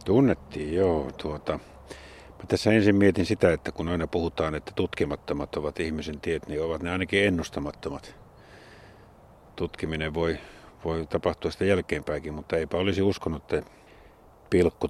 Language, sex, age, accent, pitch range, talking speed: Finnish, male, 50-69, native, 75-90 Hz, 135 wpm